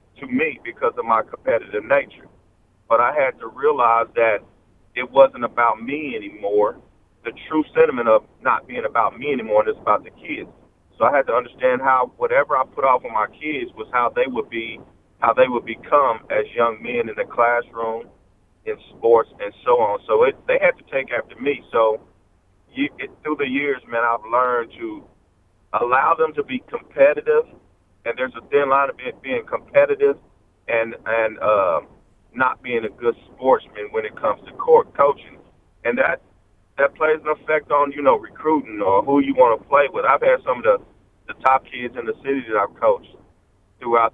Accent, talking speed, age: American, 195 wpm, 40-59